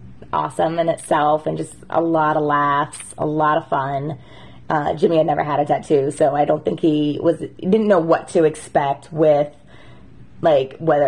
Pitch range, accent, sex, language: 145-175 Hz, American, female, English